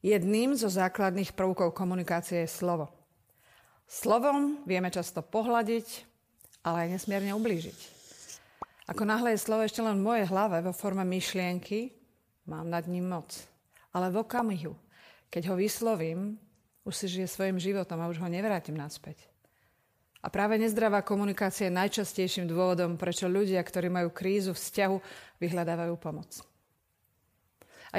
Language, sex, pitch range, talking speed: Slovak, female, 175-205 Hz, 135 wpm